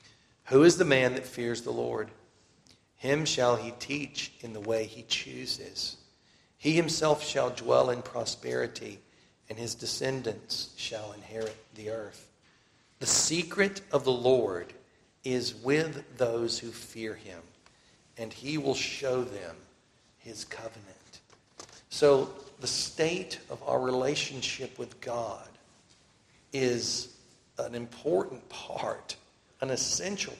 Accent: American